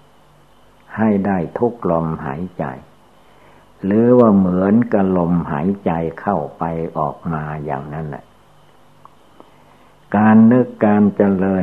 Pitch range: 85-100 Hz